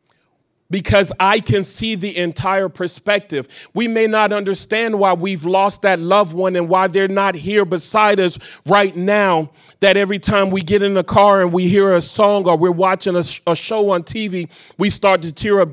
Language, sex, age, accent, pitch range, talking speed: English, male, 30-49, American, 165-195 Hz, 200 wpm